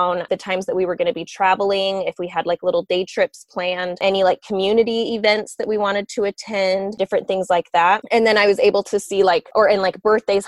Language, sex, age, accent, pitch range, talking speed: English, female, 20-39, American, 180-215 Hz, 240 wpm